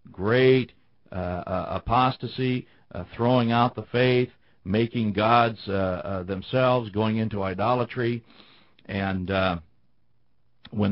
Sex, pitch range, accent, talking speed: male, 95-125 Hz, American, 105 wpm